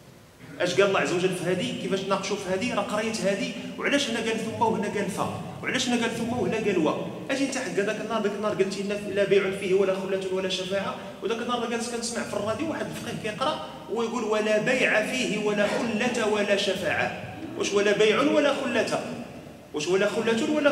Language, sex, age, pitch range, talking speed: Arabic, male, 40-59, 185-220 Hz, 205 wpm